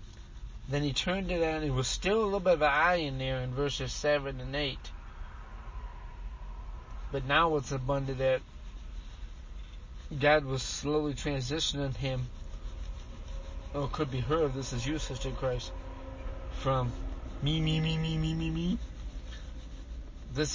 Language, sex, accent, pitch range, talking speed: English, male, American, 90-150 Hz, 145 wpm